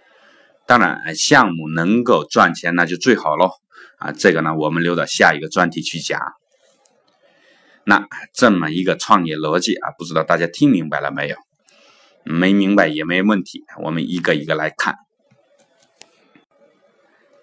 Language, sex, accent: Chinese, male, native